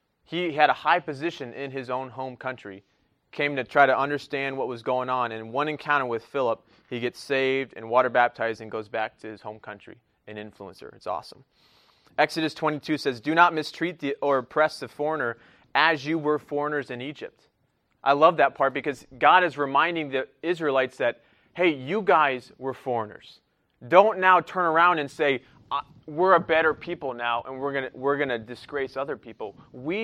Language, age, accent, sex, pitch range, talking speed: English, 30-49, American, male, 130-165 Hz, 190 wpm